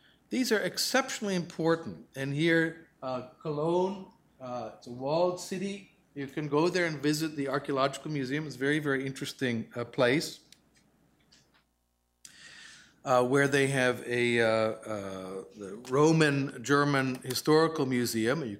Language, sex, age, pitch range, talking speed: English, male, 50-69, 130-165 Hz, 130 wpm